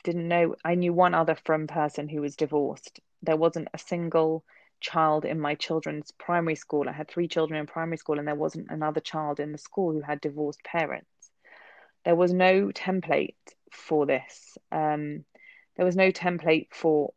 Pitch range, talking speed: 150-175 Hz, 180 wpm